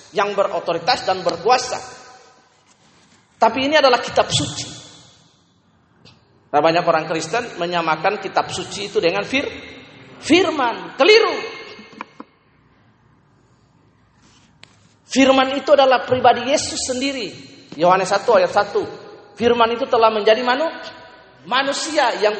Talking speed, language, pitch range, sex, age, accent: 100 wpm, Indonesian, 180-250 Hz, male, 40-59, native